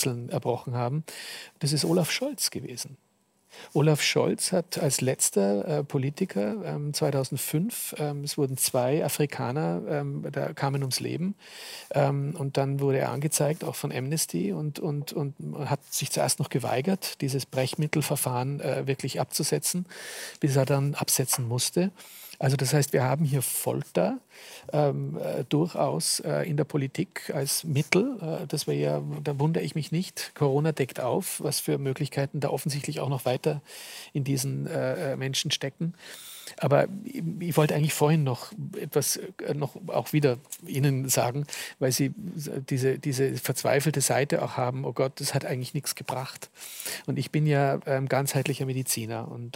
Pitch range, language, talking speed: 130-150 Hz, German, 150 wpm